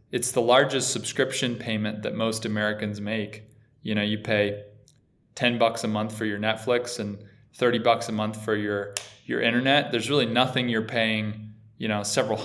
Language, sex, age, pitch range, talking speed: English, male, 20-39, 110-125 Hz, 180 wpm